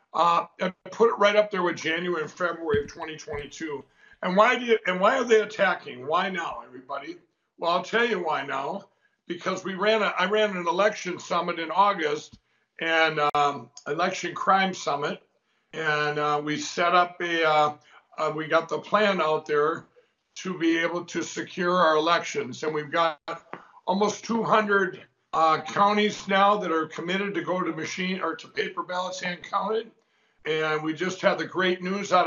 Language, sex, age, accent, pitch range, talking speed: English, male, 60-79, American, 165-205 Hz, 180 wpm